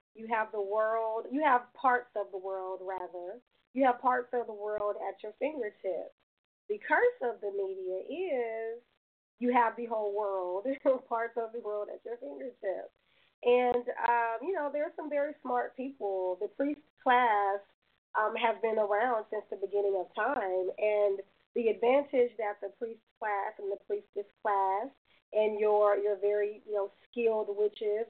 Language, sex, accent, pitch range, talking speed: English, female, American, 205-245 Hz, 170 wpm